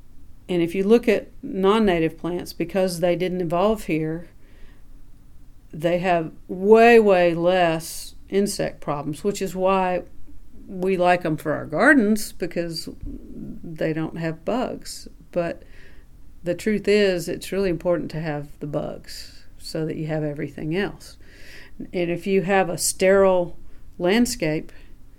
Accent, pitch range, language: American, 165-195 Hz, English